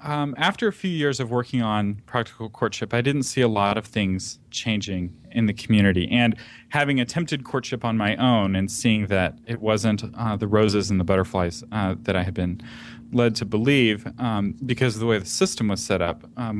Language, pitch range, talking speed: English, 100-125 Hz, 210 wpm